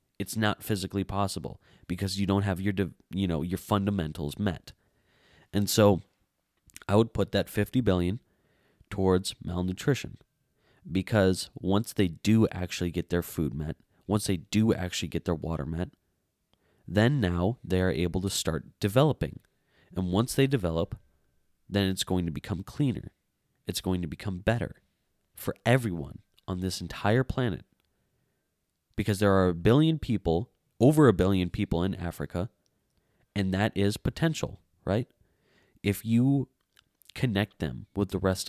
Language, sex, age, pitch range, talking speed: English, male, 20-39, 90-110 Hz, 145 wpm